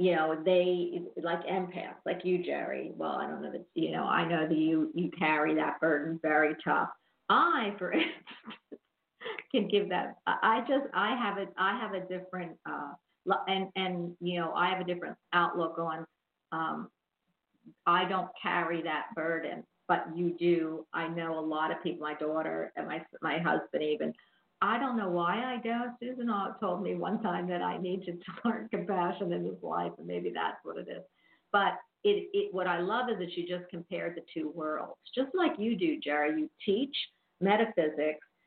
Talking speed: 185 wpm